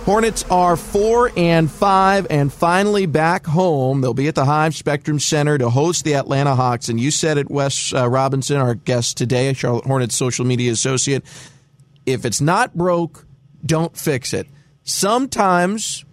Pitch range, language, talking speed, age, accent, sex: 135-160 Hz, English, 165 wpm, 40-59, American, male